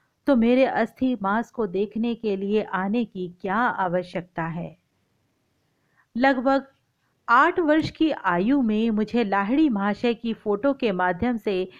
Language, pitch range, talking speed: Hindi, 195-265 Hz, 135 wpm